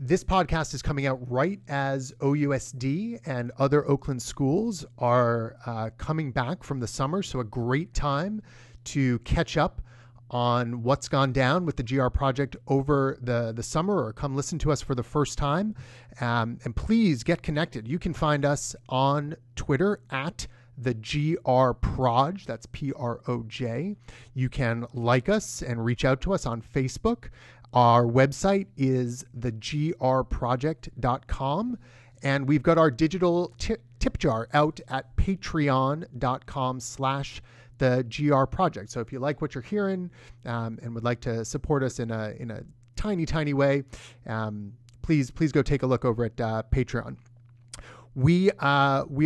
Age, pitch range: 30-49, 120-150 Hz